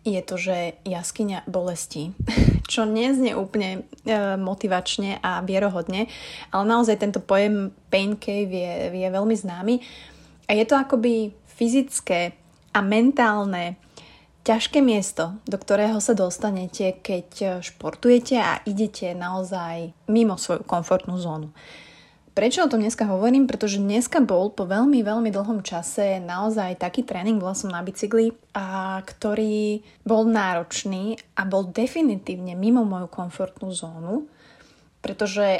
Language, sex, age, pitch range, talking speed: Slovak, female, 30-49, 185-225 Hz, 125 wpm